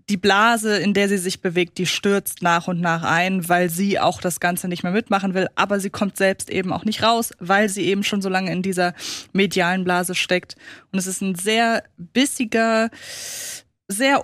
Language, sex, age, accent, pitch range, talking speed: German, female, 20-39, German, 180-220 Hz, 200 wpm